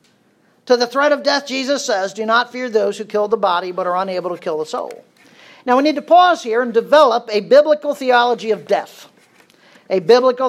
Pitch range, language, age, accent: 205-280 Hz, English, 50-69, American